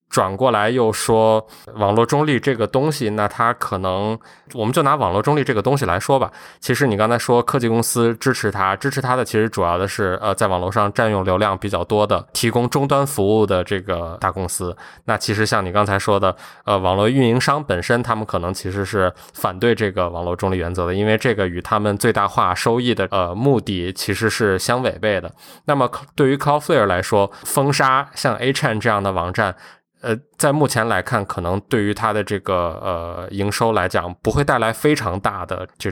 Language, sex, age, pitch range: Chinese, male, 20-39, 95-115 Hz